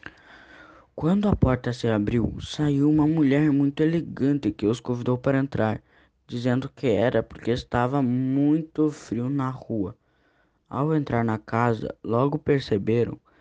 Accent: Brazilian